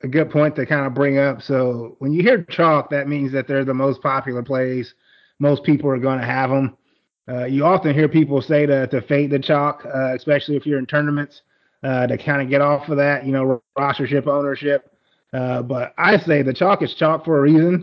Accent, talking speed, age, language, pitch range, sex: American, 230 wpm, 30-49, English, 140-165 Hz, male